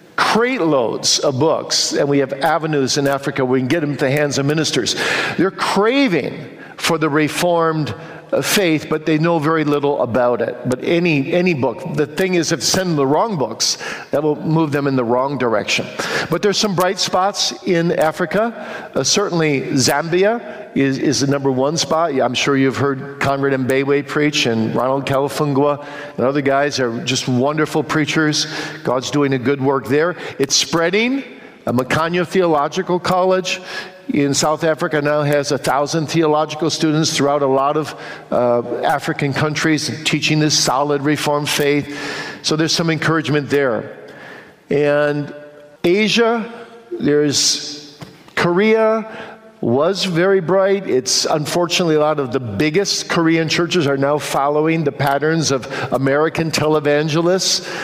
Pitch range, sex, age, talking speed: 140-175 Hz, male, 50-69, 155 wpm